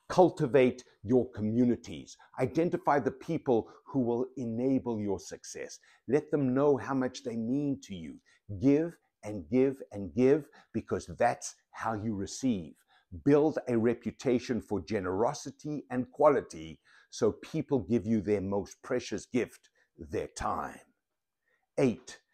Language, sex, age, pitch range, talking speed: English, male, 60-79, 115-145 Hz, 130 wpm